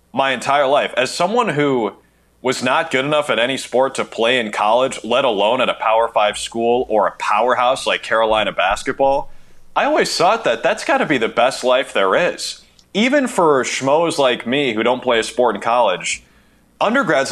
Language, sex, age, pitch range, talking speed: English, male, 30-49, 115-155 Hz, 190 wpm